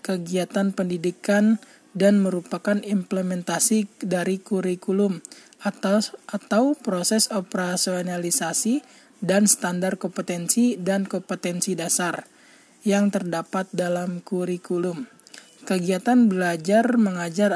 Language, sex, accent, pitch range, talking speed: Indonesian, male, native, 180-215 Hz, 80 wpm